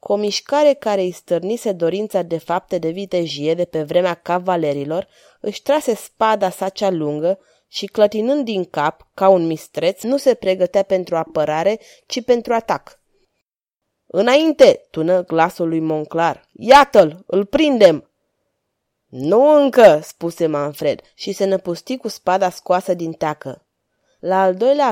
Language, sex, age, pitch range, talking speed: Romanian, female, 20-39, 175-225 Hz, 140 wpm